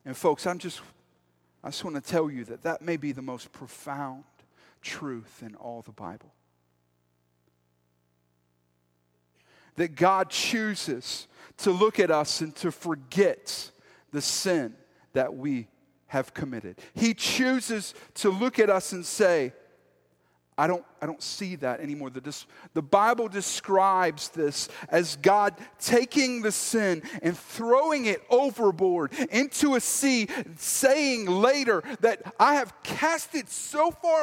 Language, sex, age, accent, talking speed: English, male, 40-59, American, 135 wpm